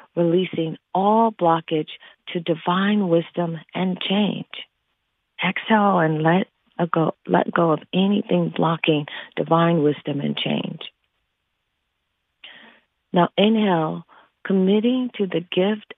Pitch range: 165-195 Hz